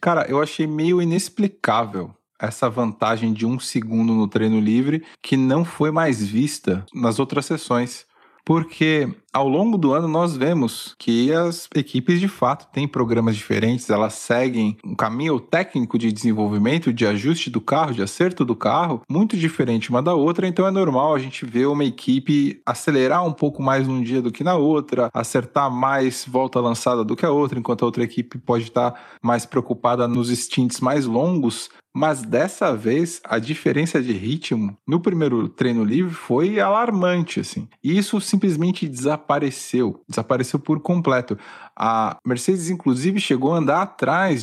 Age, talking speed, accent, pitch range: 20-39, 165 wpm, Brazilian, 115-155 Hz